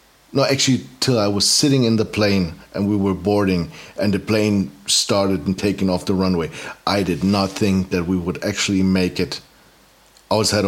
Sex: male